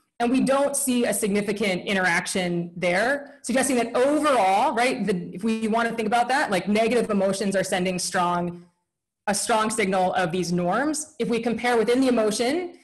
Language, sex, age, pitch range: Chinese, female, 20-39, 195-255 Hz